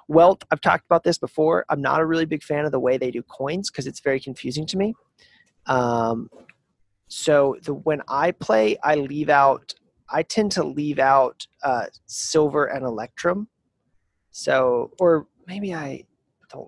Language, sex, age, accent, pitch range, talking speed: English, male, 30-49, American, 125-160 Hz, 170 wpm